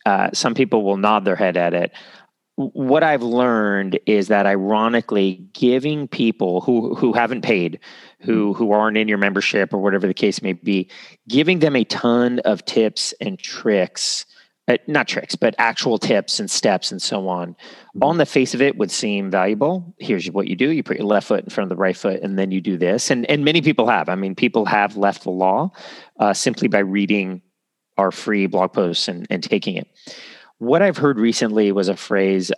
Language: English